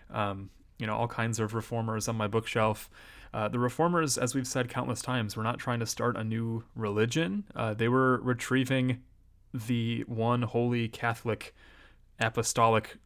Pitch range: 110-125 Hz